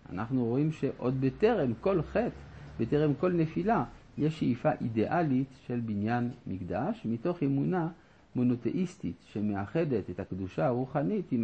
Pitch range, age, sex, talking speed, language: 105-150 Hz, 50-69, male, 120 wpm, Hebrew